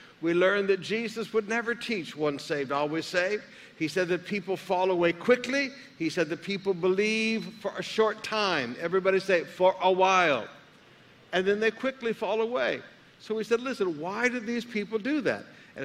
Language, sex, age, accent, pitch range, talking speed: English, male, 60-79, American, 175-220 Hz, 185 wpm